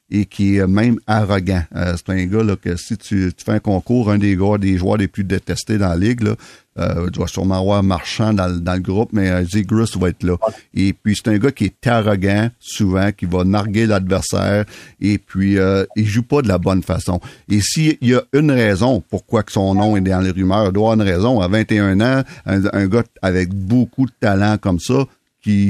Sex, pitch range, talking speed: male, 95-115 Hz, 230 wpm